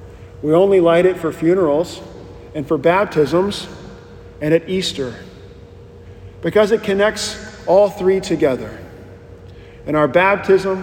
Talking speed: 115 wpm